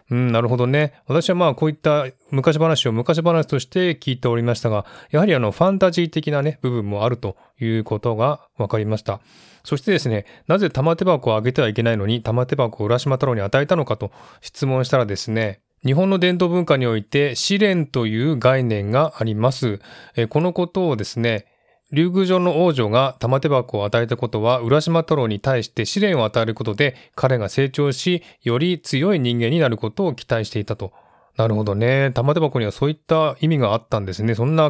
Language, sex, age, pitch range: Japanese, male, 20-39, 115-155 Hz